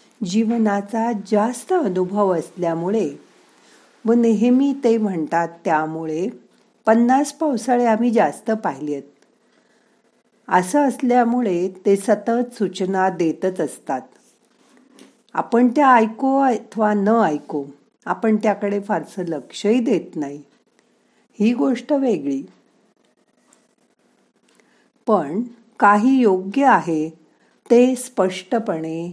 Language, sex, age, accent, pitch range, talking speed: Marathi, female, 50-69, native, 175-235 Hz, 85 wpm